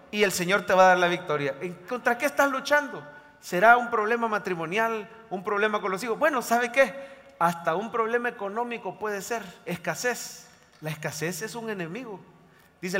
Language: English